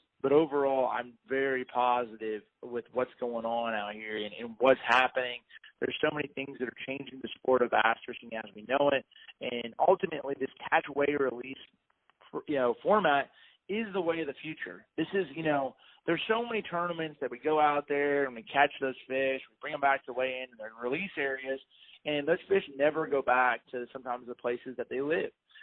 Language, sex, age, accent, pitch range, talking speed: English, male, 30-49, American, 125-145 Hz, 205 wpm